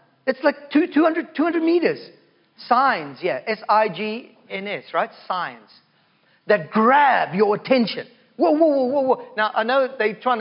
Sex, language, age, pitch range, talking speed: male, English, 40-59, 215-305 Hz, 145 wpm